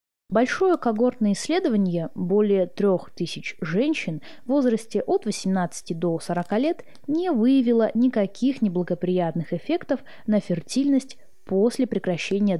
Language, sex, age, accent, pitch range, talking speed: Russian, female, 20-39, native, 180-255 Hz, 105 wpm